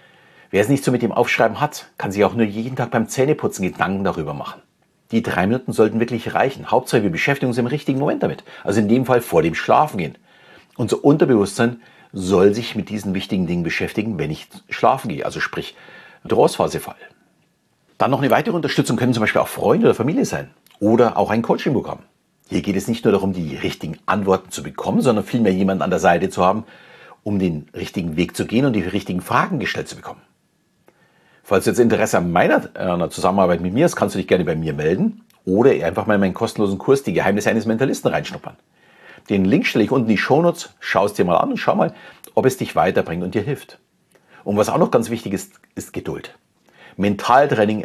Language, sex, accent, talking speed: German, male, German, 210 wpm